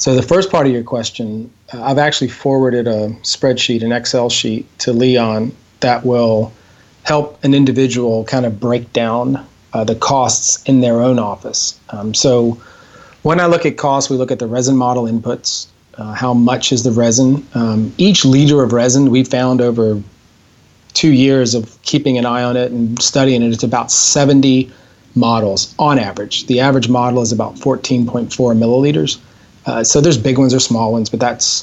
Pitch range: 115-130 Hz